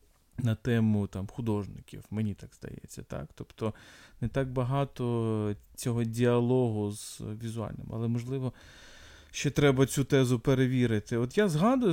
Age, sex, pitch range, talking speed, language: 20-39, male, 110-135 Hz, 130 wpm, Ukrainian